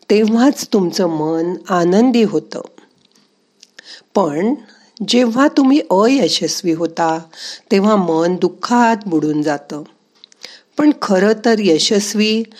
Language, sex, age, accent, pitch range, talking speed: Marathi, female, 50-69, native, 170-235 Hz, 90 wpm